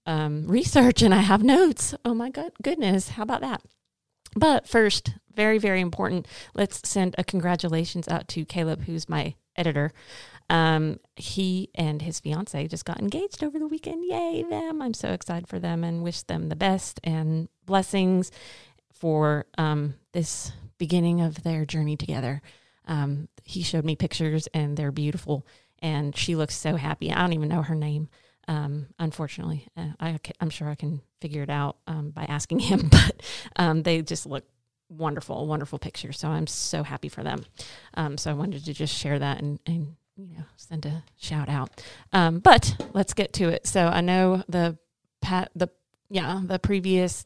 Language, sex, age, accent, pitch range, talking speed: English, female, 30-49, American, 150-185 Hz, 180 wpm